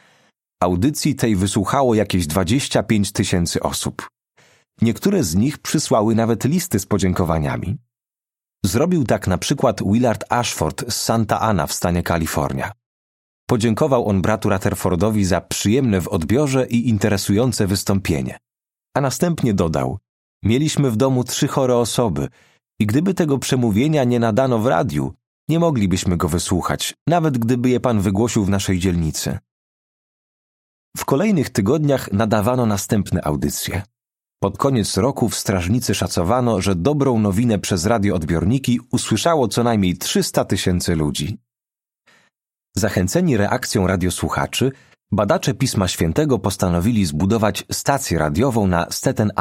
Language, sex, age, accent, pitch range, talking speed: Polish, male, 30-49, native, 95-125 Hz, 125 wpm